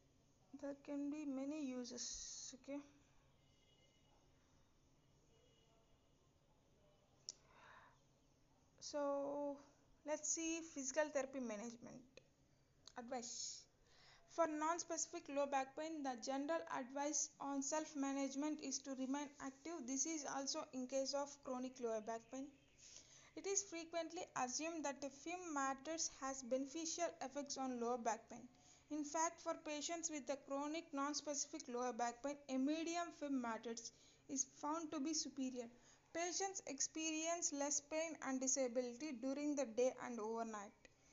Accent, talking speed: Indian, 120 wpm